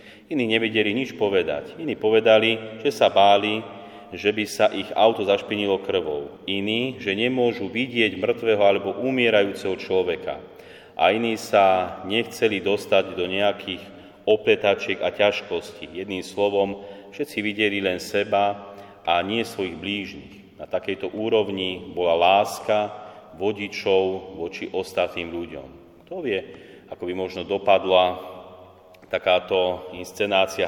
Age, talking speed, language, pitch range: 30-49, 120 wpm, Slovak, 95-105 Hz